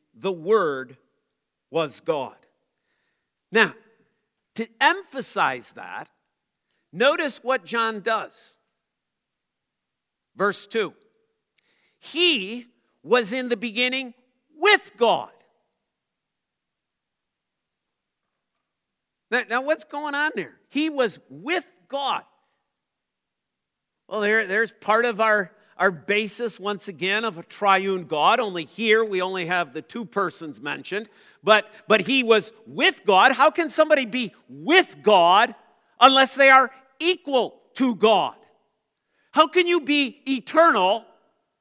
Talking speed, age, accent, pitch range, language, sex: 110 wpm, 50-69, American, 215-295 Hz, English, male